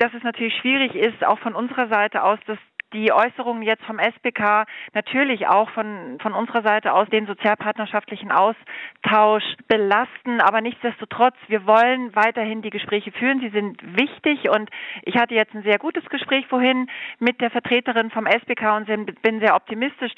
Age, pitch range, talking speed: 40-59, 215-250 Hz, 165 wpm